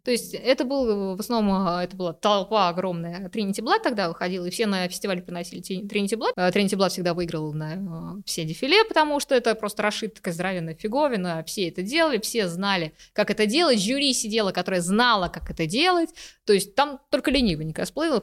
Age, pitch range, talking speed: 20-39, 180-245 Hz, 190 wpm